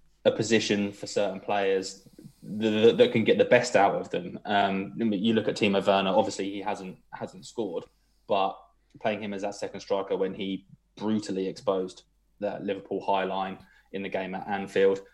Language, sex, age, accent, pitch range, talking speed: English, male, 20-39, British, 95-115 Hz, 180 wpm